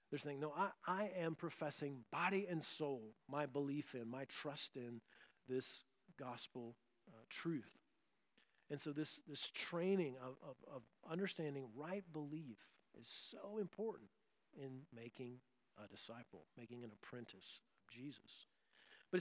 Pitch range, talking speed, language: 135-170 Hz, 135 wpm, English